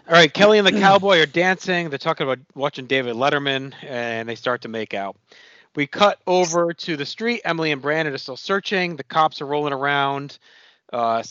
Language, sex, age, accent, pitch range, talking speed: English, male, 40-59, American, 125-165 Hz, 200 wpm